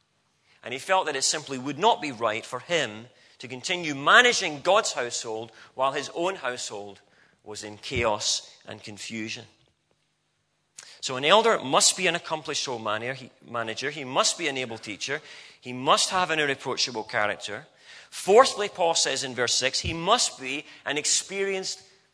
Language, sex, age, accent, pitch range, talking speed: English, male, 40-59, British, 135-195 Hz, 155 wpm